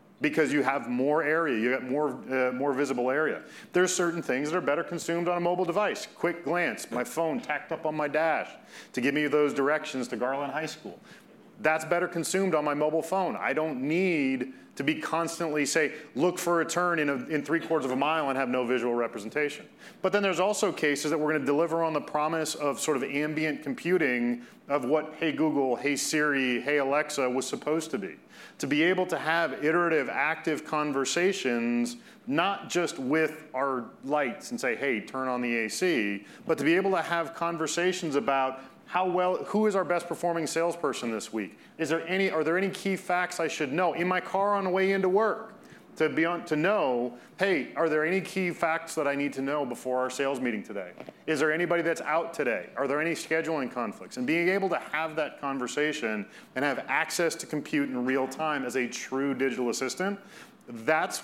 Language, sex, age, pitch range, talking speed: English, male, 40-59, 135-175 Hz, 205 wpm